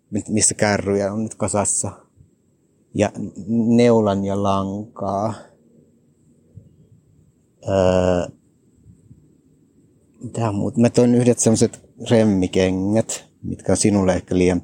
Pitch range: 95-115 Hz